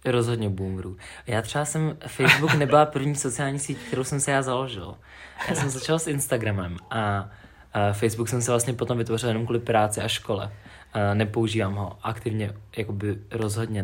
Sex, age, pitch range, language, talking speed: male, 20-39, 105-120 Hz, Czech, 170 wpm